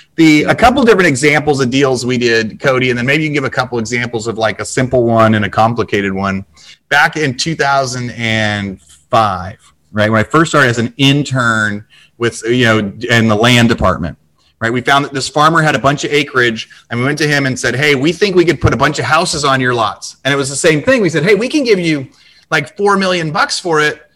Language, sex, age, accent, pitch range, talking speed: English, male, 30-49, American, 120-160 Hz, 235 wpm